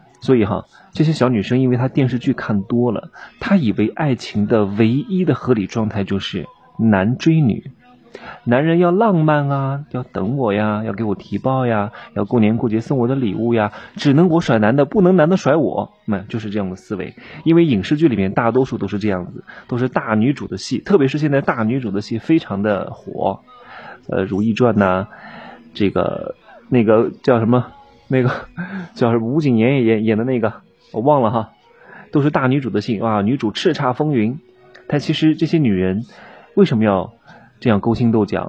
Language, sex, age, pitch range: Chinese, male, 30-49, 105-145 Hz